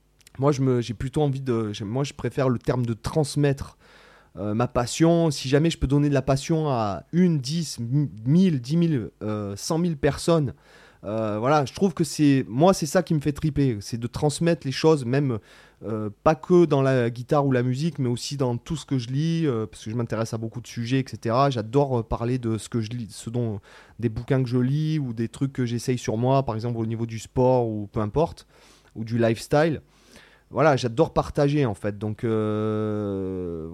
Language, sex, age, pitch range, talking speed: French, male, 30-49, 110-140 Hz, 215 wpm